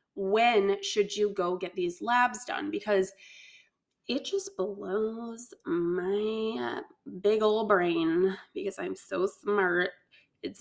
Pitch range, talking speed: 190-235 Hz, 120 wpm